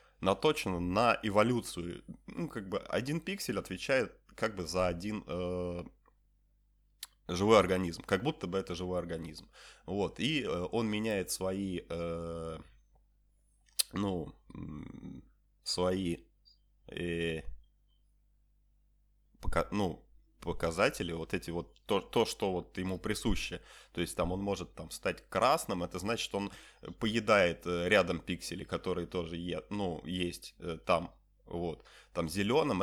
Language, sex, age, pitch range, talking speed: Ukrainian, male, 30-49, 85-100 Hz, 115 wpm